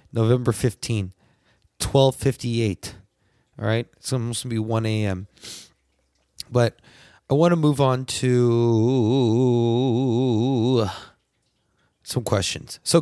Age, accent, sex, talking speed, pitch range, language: 20-39, American, male, 110 wpm, 110-150 Hz, English